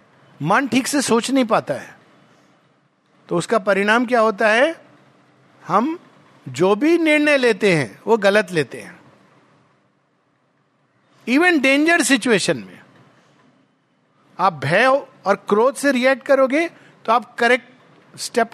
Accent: native